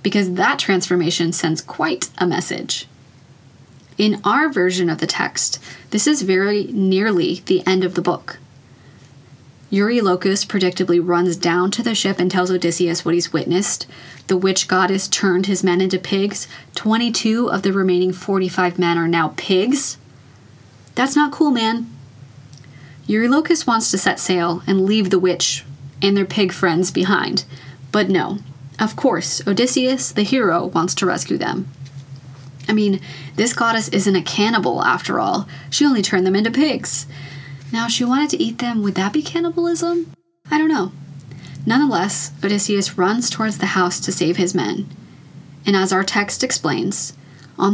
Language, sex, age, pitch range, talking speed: English, female, 20-39, 160-210 Hz, 160 wpm